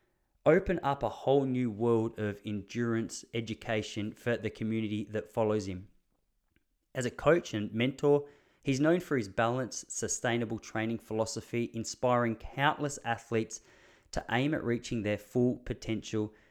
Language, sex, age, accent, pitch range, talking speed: English, male, 20-39, Australian, 105-130 Hz, 140 wpm